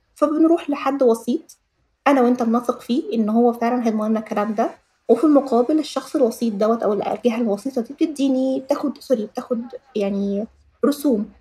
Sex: female